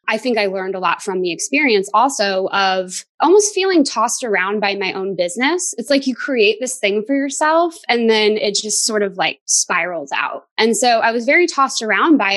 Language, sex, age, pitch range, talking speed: English, female, 20-39, 195-235 Hz, 215 wpm